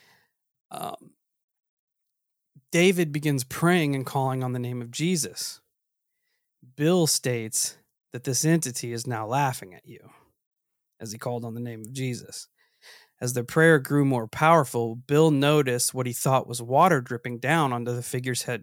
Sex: male